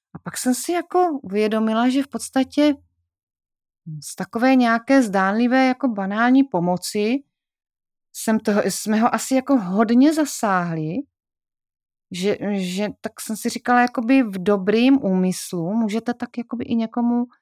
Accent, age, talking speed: native, 30-49, 135 wpm